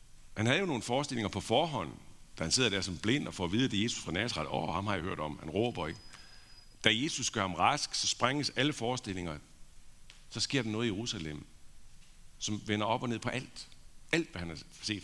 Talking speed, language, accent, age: 240 wpm, Danish, native, 60-79